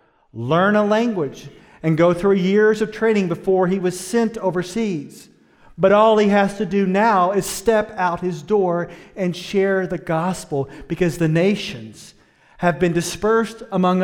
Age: 40-59